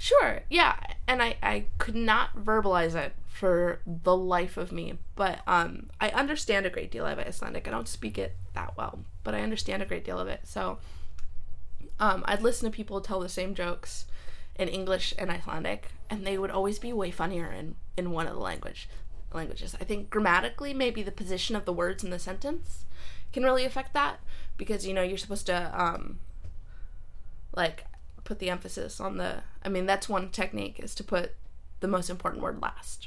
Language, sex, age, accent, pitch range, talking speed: English, female, 20-39, American, 155-215 Hz, 195 wpm